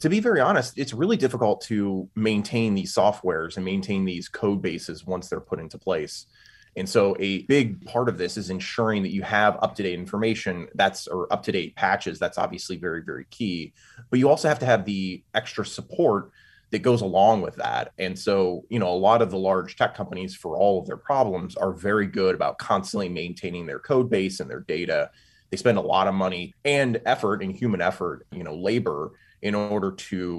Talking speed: 205 wpm